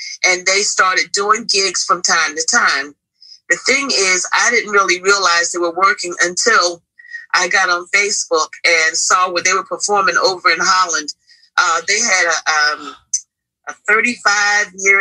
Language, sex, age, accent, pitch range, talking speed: English, female, 40-59, American, 185-255 Hz, 150 wpm